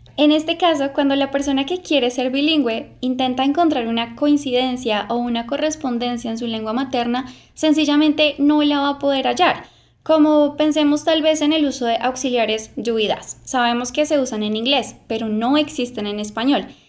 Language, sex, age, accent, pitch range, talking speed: English, female, 10-29, Colombian, 235-290 Hz, 175 wpm